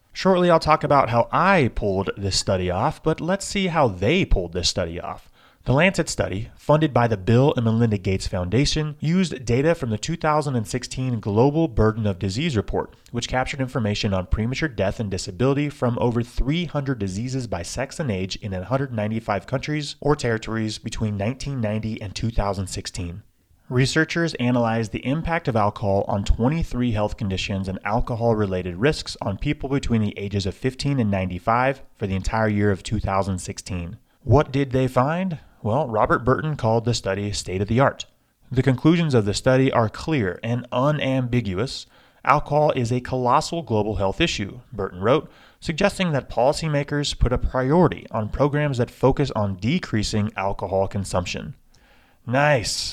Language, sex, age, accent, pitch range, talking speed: English, male, 30-49, American, 105-145 Hz, 155 wpm